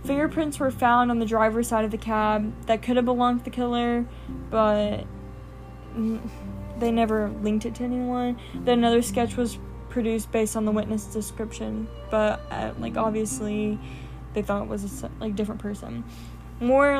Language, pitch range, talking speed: English, 215-240 Hz, 165 wpm